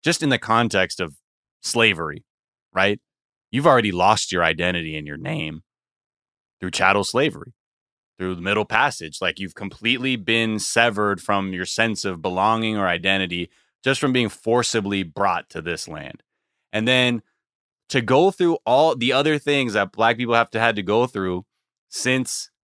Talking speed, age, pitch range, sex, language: 160 wpm, 20-39, 95-125 Hz, male, English